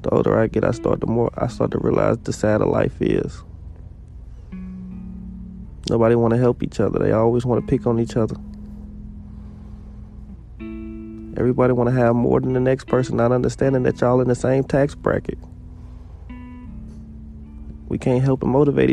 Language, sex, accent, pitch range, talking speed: English, male, American, 100-125 Hz, 160 wpm